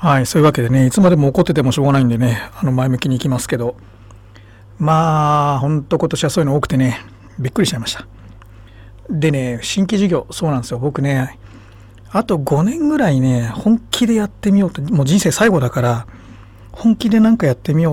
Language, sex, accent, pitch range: Japanese, male, native, 105-175 Hz